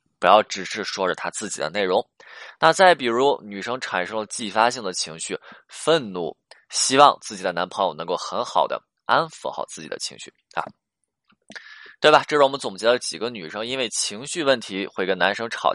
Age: 20-39